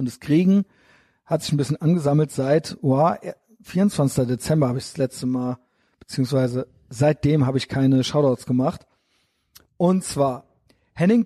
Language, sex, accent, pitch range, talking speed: German, male, German, 135-200 Hz, 140 wpm